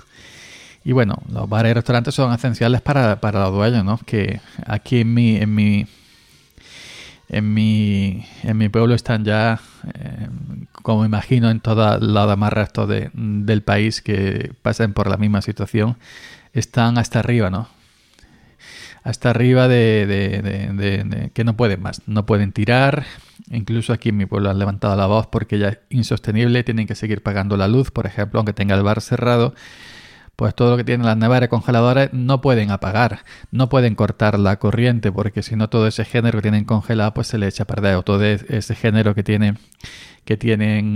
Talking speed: 185 wpm